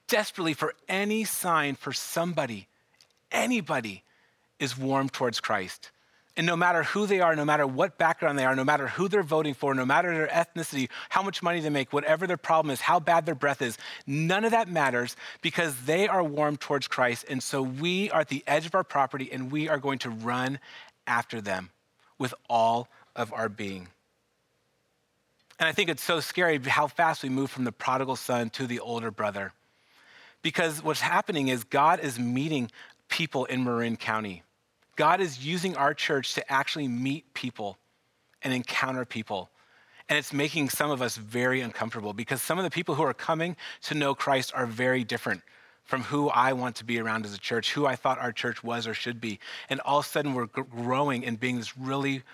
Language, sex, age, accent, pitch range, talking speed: English, male, 30-49, American, 120-160 Hz, 200 wpm